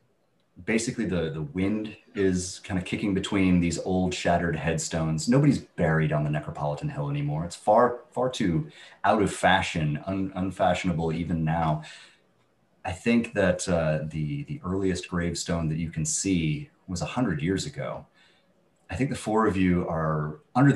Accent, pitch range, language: American, 80-105 Hz, English